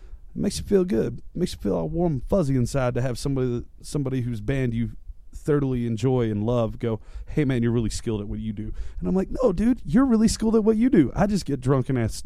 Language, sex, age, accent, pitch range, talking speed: English, male, 30-49, American, 110-135 Hz, 260 wpm